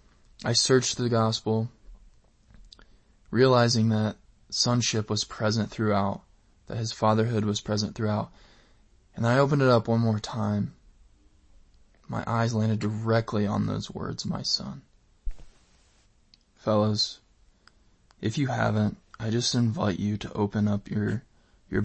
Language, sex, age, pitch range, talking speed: English, male, 20-39, 105-120 Hz, 125 wpm